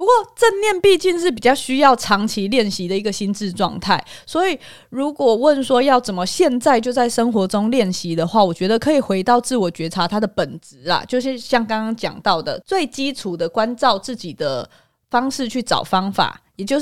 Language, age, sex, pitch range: Chinese, 20-39, female, 185-260 Hz